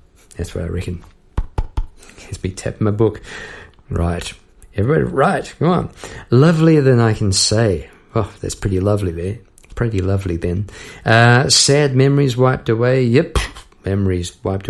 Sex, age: male, 50-69